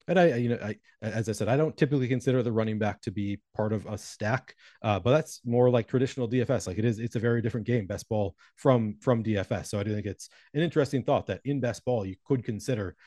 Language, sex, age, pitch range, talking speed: English, male, 30-49, 100-125 Hz, 255 wpm